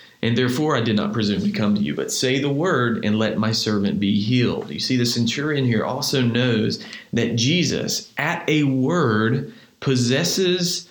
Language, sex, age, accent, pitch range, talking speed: English, male, 40-59, American, 110-135 Hz, 180 wpm